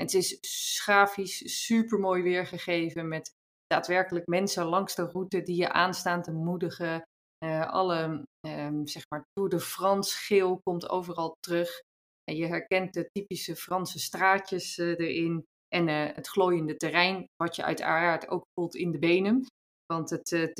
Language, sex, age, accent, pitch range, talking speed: Dutch, female, 20-39, Dutch, 165-190 Hz, 155 wpm